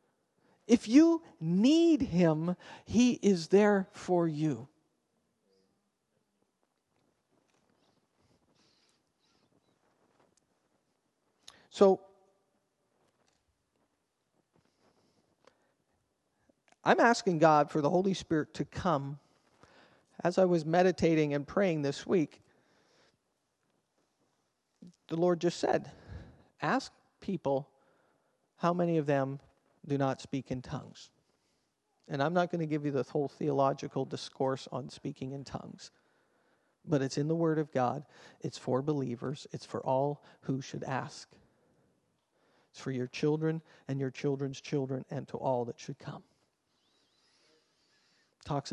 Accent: American